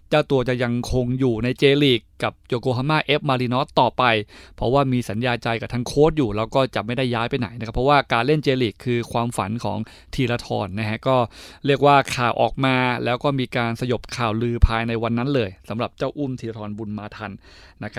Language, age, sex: Thai, 20-39, male